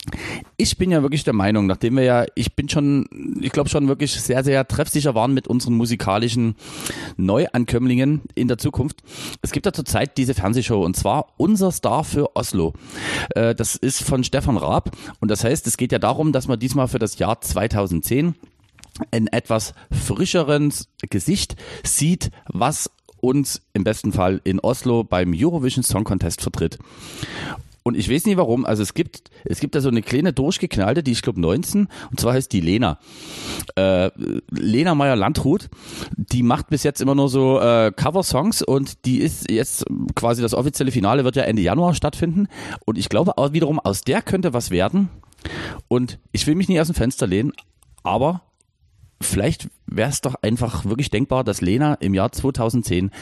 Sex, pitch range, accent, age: male, 110-145 Hz, German, 40-59